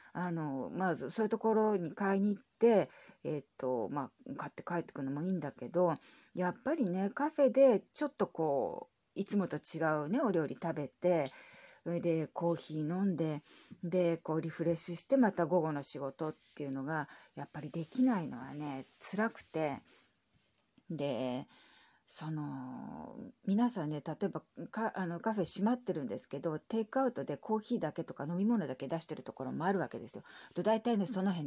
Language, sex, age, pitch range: Japanese, female, 40-59, 155-230 Hz